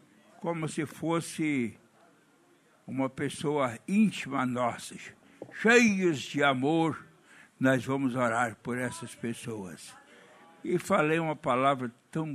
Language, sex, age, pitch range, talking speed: Portuguese, male, 60-79, 135-180 Hz, 100 wpm